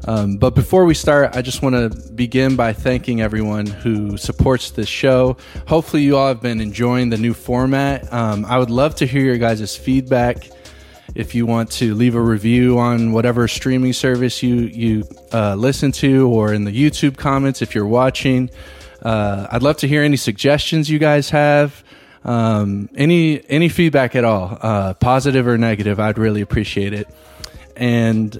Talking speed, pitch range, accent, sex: 180 wpm, 110-130 Hz, American, male